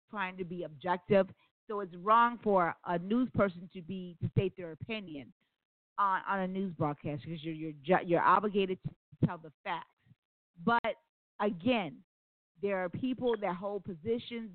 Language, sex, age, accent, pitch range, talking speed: English, female, 40-59, American, 170-210 Hz, 165 wpm